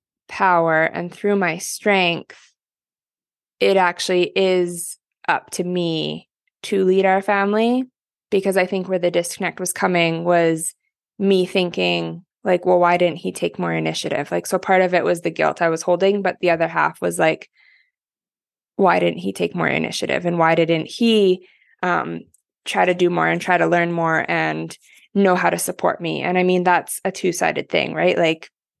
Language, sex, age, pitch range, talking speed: English, female, 20-39, 165-195 Hz, 180 wpm